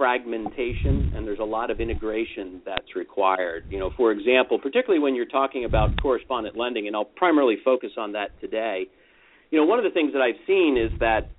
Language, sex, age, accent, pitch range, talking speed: English, male, 50-69, American, 120-155 Hz, 200 wpm